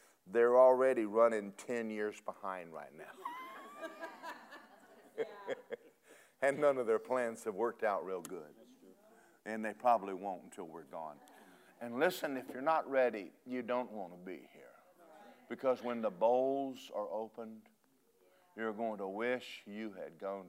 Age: 50-69